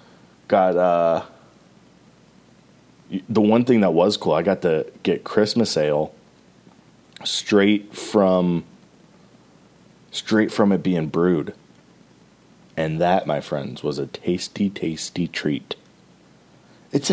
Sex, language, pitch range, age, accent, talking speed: male, English, 90-120 Hz, 30-49, American, 110 wpm